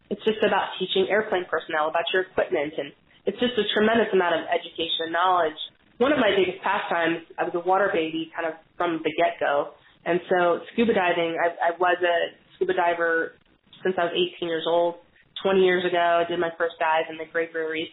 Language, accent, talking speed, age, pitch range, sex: English, American, 210 wpm, 20-39, 170-200 Hz, female